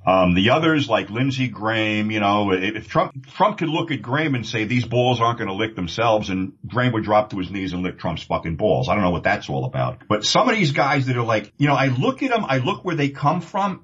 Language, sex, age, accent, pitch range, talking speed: English, male, 50-69, American, 110-150 Hz, 275 wpm